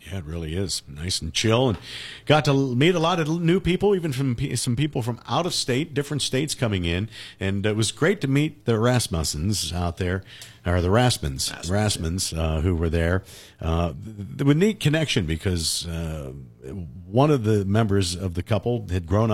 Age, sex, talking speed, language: 50-69, male, 195 wpm, English